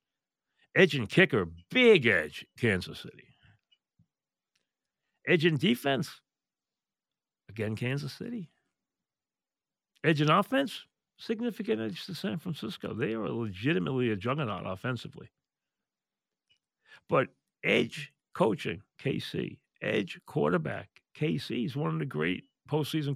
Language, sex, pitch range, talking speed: English, male, 115-175 Hz, 105 wpm